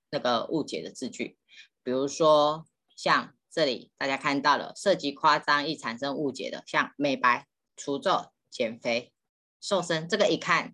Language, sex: Chinese, female